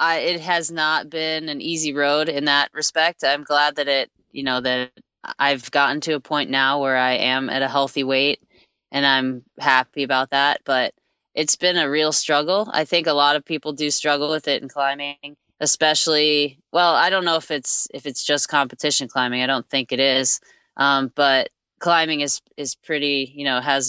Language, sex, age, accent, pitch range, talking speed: German, female, 10-29, American, 135-150 Hz, 200 wpm